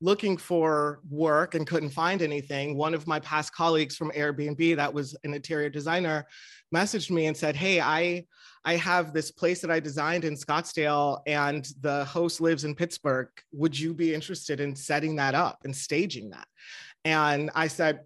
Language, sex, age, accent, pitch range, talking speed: English, male, 30-49, American, 155-180 Hz, 180 wpm